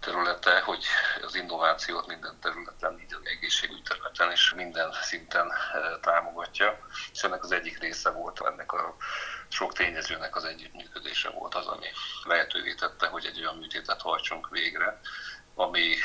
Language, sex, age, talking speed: Hungarian, male, 50-69, 140 wpm